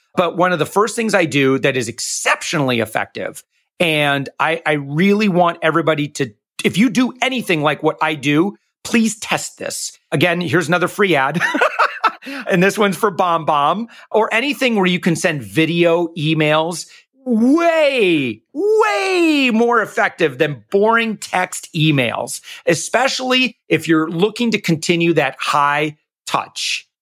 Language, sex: English, male